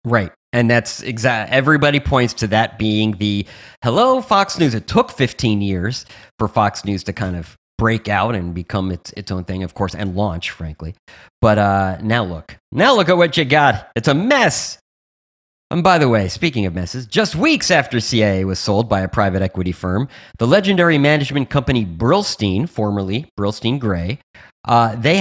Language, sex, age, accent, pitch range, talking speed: English, male, 30-49, American, 105-155 Hz, 185 wpm